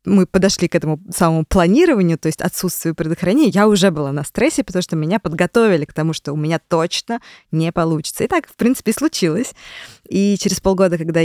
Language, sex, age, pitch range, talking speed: Russian, female, 20-39, 160-220 Hz, 190 wpm